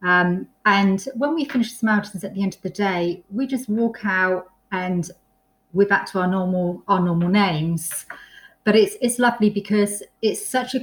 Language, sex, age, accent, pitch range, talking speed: English, female, 30-49, British, 180-215 Hz, 185 wpm